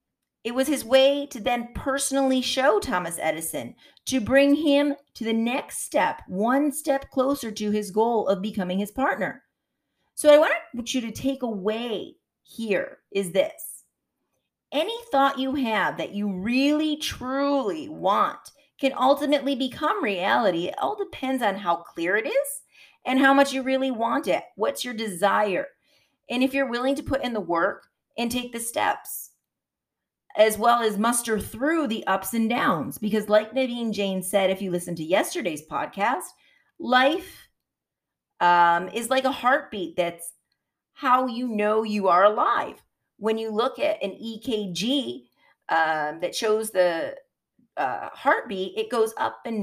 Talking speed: 160 wpm